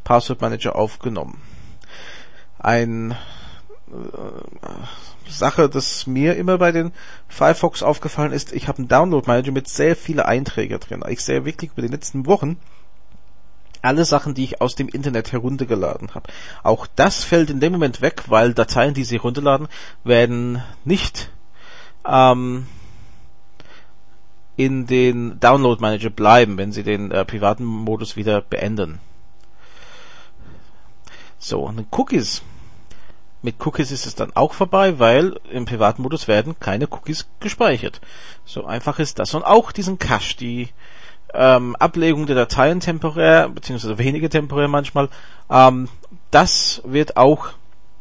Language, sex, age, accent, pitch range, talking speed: German, male, 40-59, Austrian, 115-145 Hz, 130 wpm